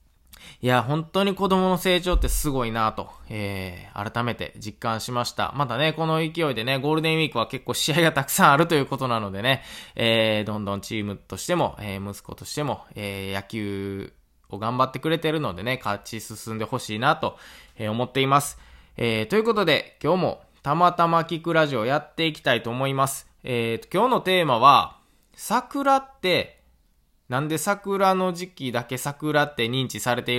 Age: 20-39